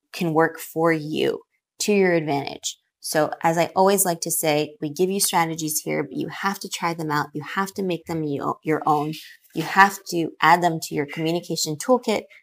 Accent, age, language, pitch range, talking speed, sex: American, 20-39, English, 155-195 Hz, 205 wpm, female